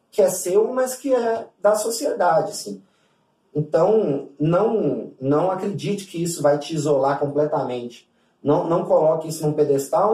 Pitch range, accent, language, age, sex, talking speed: 145-180 Hz, Brazilian, Portuguese, 30-49, male, 150 wpm